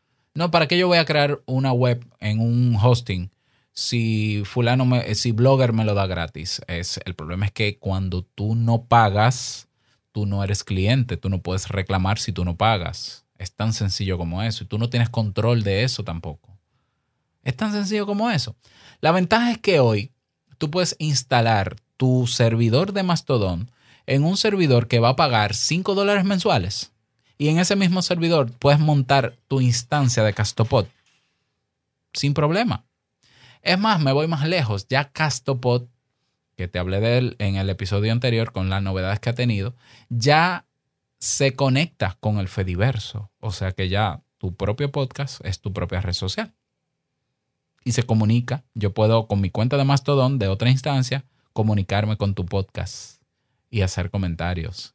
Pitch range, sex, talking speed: 100-135 Hz, male, 170 wpm